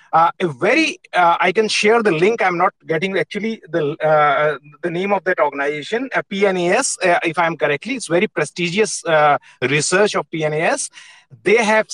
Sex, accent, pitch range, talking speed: male, Indian, 175-230 Hz, 175 wpm